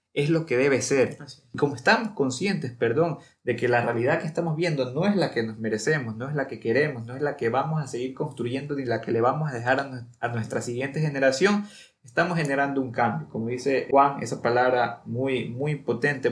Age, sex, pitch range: 20-39, male, 120-155 Hz